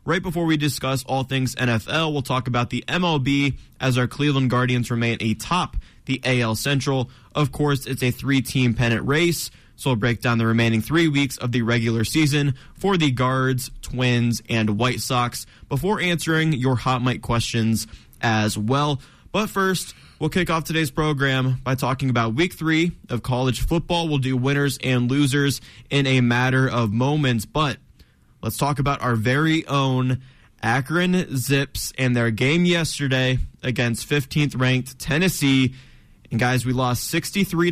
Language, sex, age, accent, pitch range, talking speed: English, male, 20-39, American, 120-145 Hz, 160 wpm